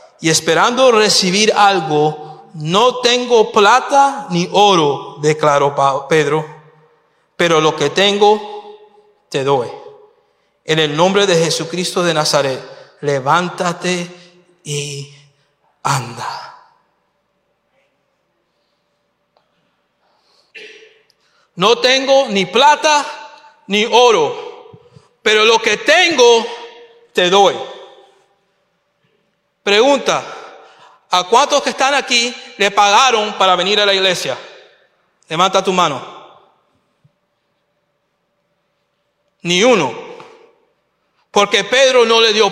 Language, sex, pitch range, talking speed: English, male, 165-265 Hz, 90 wpm